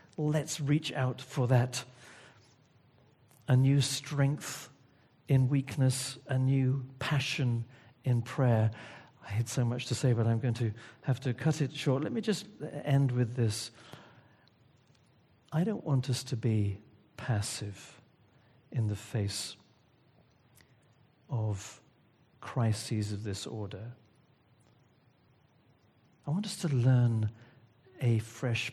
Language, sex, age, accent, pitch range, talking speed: English, male, 50-69, British, 115-140 Hz, 120 wpm